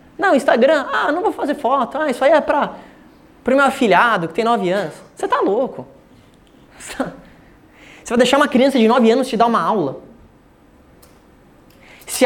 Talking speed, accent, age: 170 wpm, Brazilian, 20-39